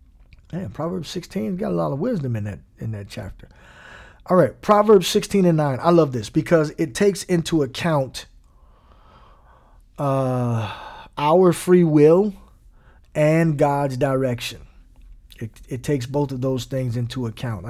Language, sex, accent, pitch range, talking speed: English, male, American, 115-155 Hz, 145 wpm